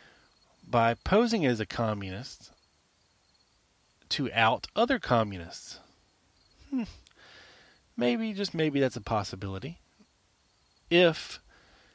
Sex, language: male, English